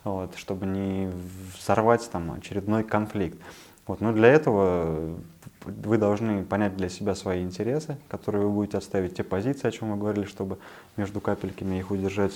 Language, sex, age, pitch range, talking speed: Russian, male, 20-39, 95-115 Hz, 160 wpm